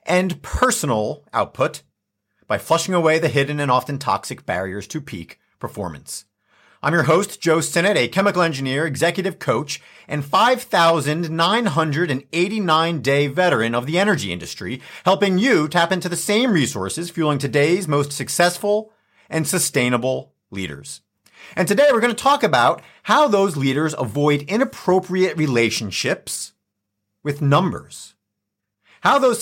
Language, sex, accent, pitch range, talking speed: English, male, American, 140-190 Hz, 130 wpm